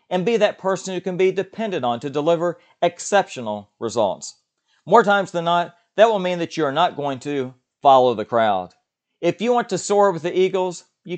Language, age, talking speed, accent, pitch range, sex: English, 50-69, 205 wpm, American, 135-185 Hz, male